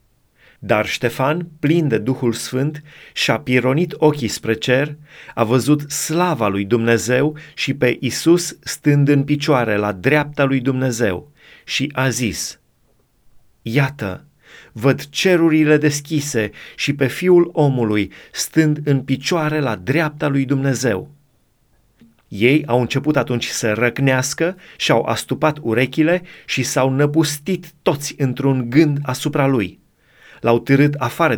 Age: 30-49